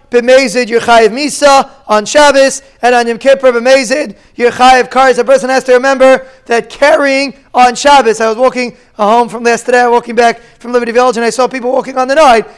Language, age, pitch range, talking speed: English, 20-39, 230-270 Hz, 205 wpm